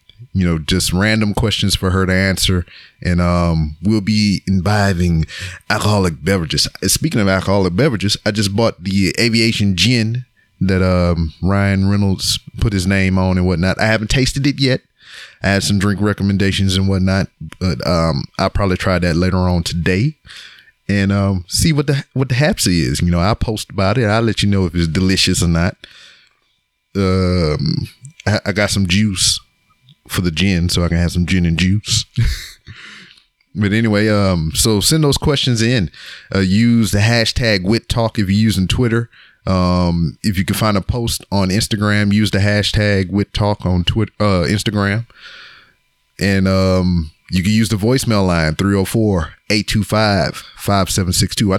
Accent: American